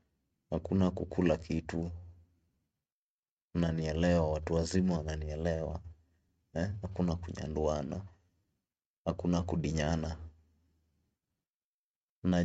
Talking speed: 65 wpm